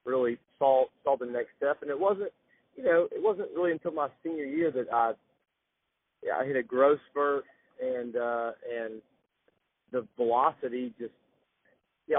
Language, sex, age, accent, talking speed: English, male, 40-59, American, 165 wpm